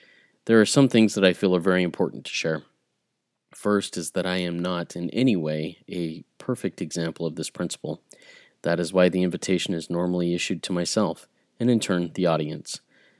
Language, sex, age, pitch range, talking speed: English, male, 30-49, 85-105 Hz, 190 wpm